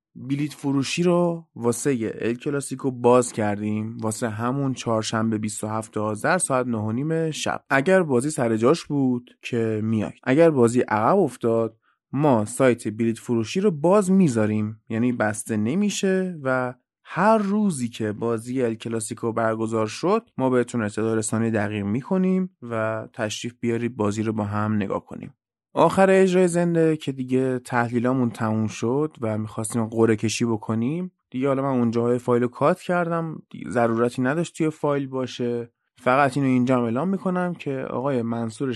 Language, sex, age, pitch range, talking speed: Persian, male, 20-39, 115-160 Hz, 140 wpm